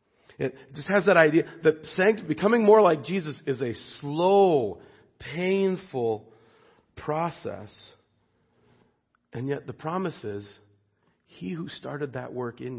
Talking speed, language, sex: 120 wpm, English, male